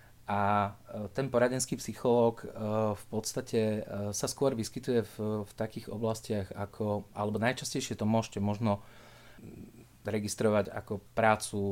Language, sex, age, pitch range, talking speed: Slovak, male, 30-49, 100-115 Hz, 115 wpm